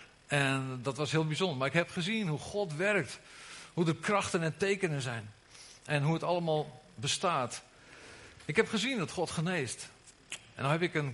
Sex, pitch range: male, 130-185 Hz